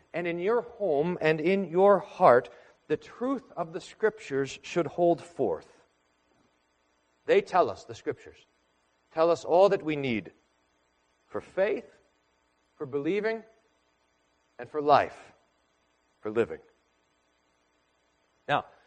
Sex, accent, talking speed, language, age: male, American, 120 wpm, English, 40-59